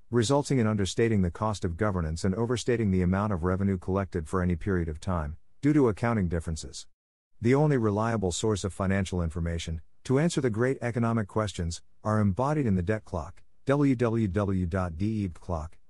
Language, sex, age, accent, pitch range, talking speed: English, male, 50-69, American, 90-115 Hz, 160 wpm